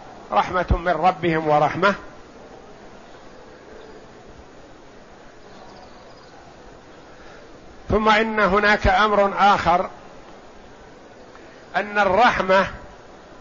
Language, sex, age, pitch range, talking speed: Arabic, male, 50-69, 180-225 Hz, 50 wpm